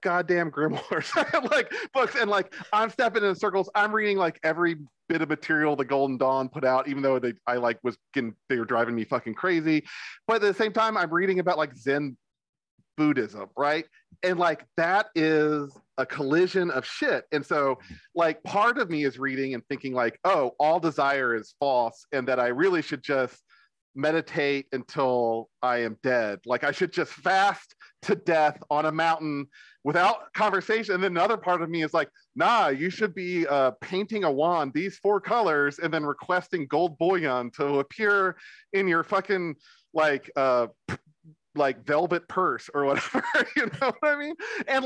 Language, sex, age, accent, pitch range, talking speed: English, male, 40-59, American, 135-185 Hz, 185 wpm